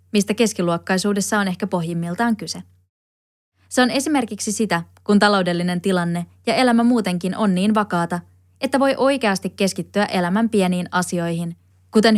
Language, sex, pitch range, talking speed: Finnish, female, 165-210 Hz, 135 wpm